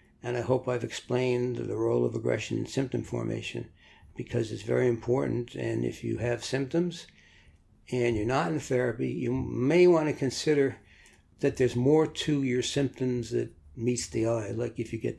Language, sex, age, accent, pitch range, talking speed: English, male, 60-79, American, 110-125 Hz, 180 wpm